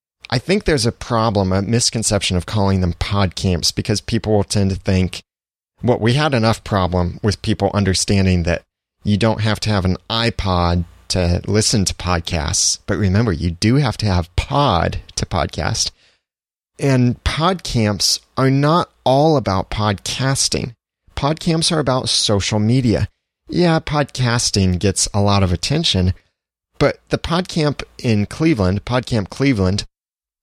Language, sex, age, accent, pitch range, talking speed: English, male, 30-49, American, 90-115 Hz, 145 wpm